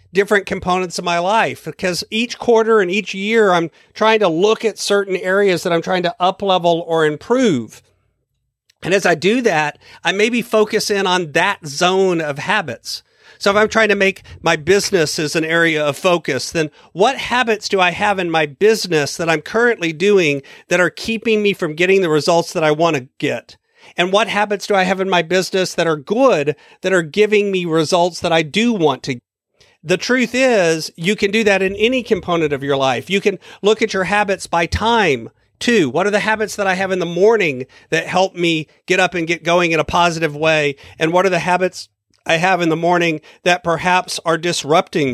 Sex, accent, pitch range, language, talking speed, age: male, American, 165-205 Hz, English, 210 wpm, 40-59